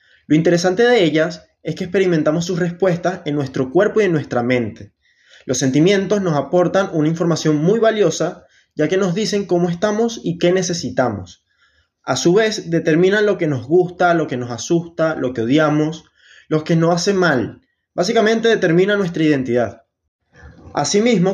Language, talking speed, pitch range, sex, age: Spanish, 165 wpm, 140-180 Hz, male, 20-39